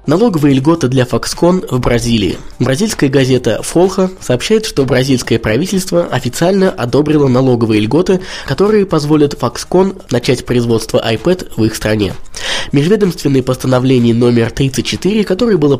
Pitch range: 120-170 Hz